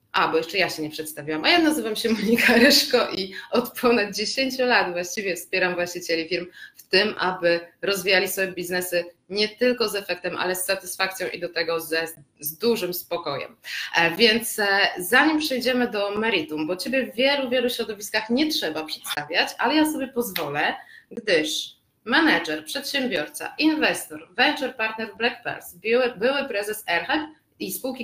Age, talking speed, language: 20-39, 155 wpm, Polish